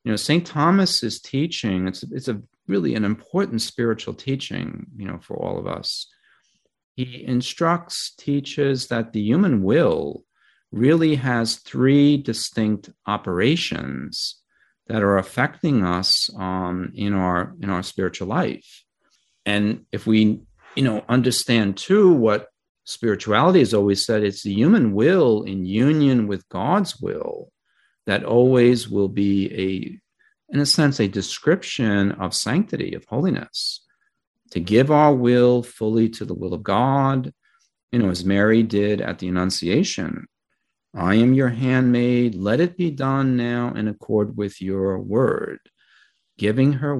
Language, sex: English, male